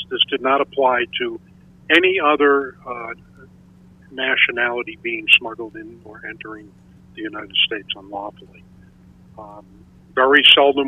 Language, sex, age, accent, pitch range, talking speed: English, male, 50-69, American, 120-145 Hz, 115 wpm